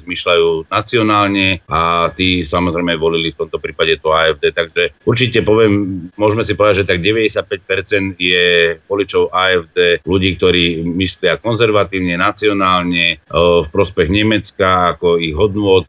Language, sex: Czech, male